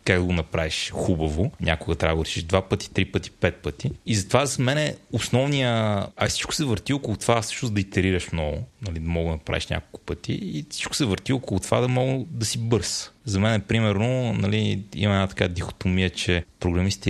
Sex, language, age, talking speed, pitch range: male, Bulgarian, 30-49, 210 wpm, 95-115 Hz